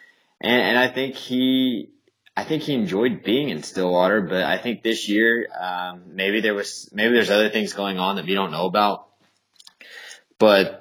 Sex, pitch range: male, 95-115 Hz